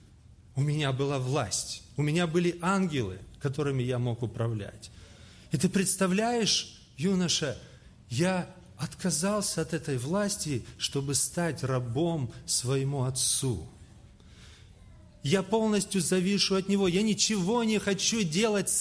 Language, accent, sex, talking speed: Russian, native, male, 115 wpm